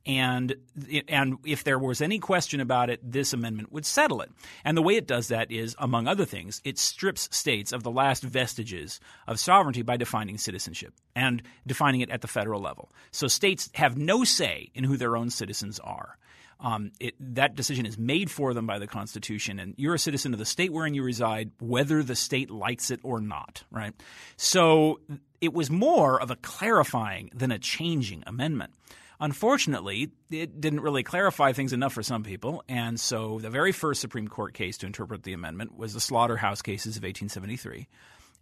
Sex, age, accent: male, 40-59, American